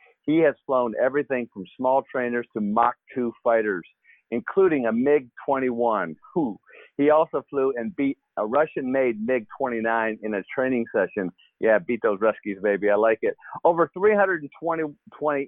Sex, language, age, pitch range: male, English, 50-69, 115-140 Hz